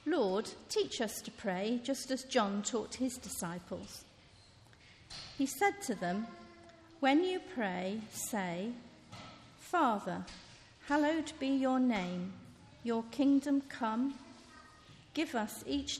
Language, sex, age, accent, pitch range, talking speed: English, female, 50-69, British, 200-275 Hz, 115 wpm